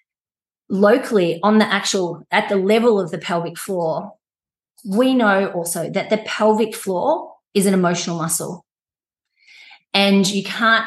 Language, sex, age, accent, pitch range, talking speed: English, female, 30-49, Australian, 175-210 Hz, 140 wpm